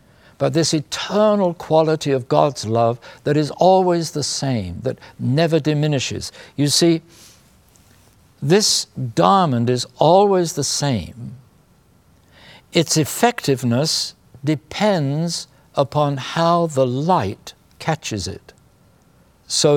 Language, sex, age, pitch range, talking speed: English, male, 60-79, 115-155 Hz, 100 wpm